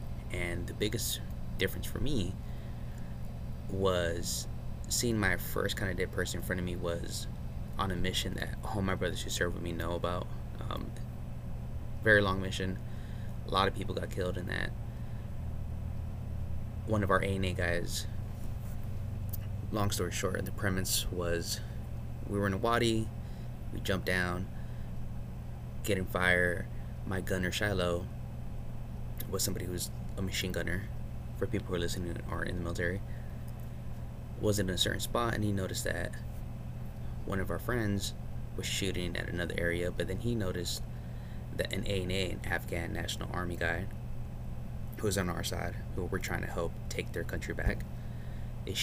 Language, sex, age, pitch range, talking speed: English, male, 20-39, 85-105 Hz, 160 wpm